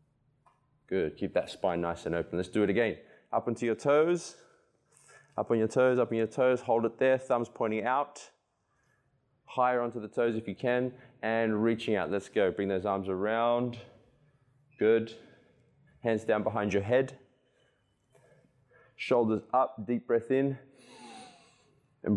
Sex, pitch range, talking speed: male, 95-125 Hz, 155 wpm